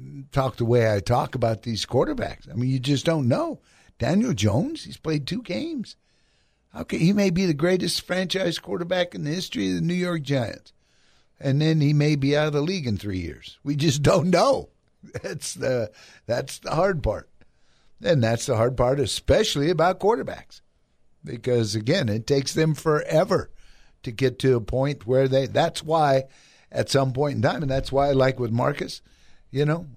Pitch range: 120-155 Hz